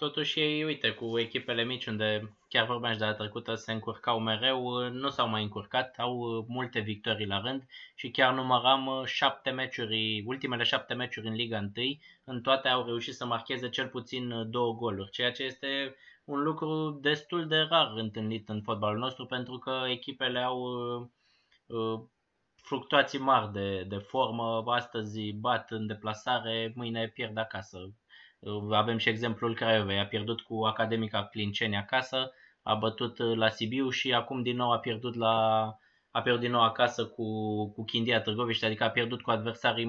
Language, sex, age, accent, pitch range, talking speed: Romanian, male, 20-39, native, 110-130 Hz, 160 wpm